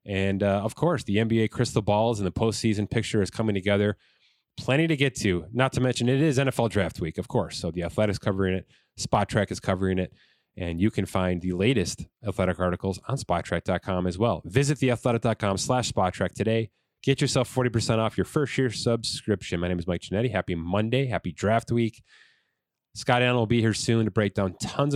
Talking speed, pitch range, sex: 210 wpm, 95-125 Hz, male